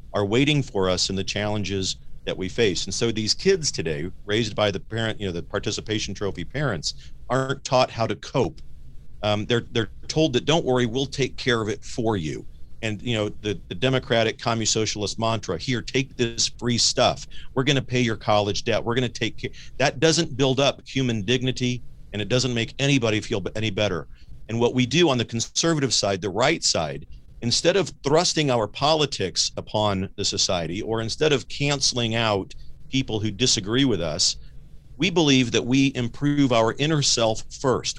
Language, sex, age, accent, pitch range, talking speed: English, male, 50-69, American, 105-135 Hz, 190 wpm